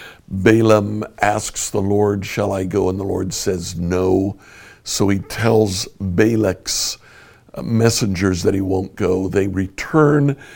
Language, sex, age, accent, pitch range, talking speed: English, male, 60-79, American, 95-115 Hz, 130 wpm